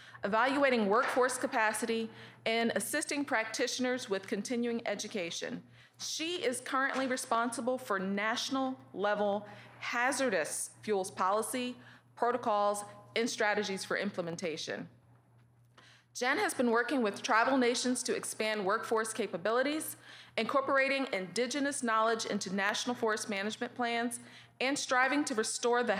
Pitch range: 200-255 Hz